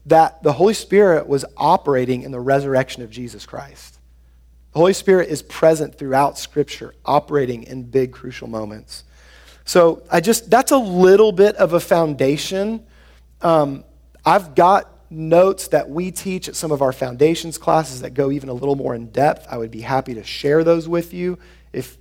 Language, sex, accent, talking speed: English, male, American, 175 wpm